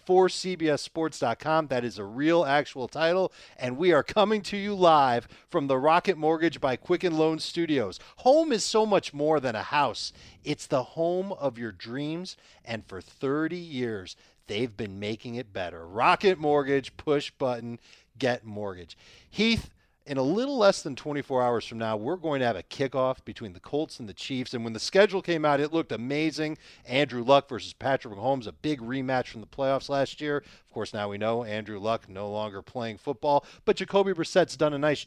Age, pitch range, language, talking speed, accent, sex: 40-59, 120-165 Hz, English, 195 wpm, American, male